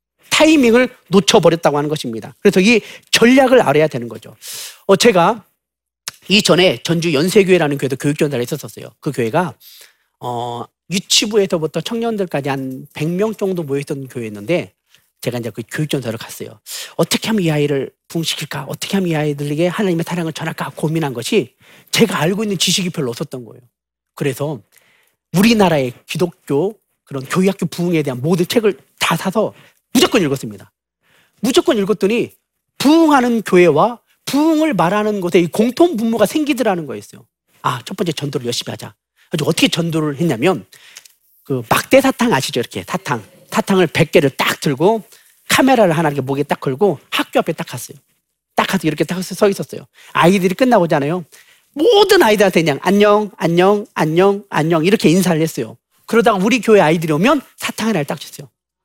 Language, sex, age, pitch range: Korean, male, 40-59, 150-210 Hz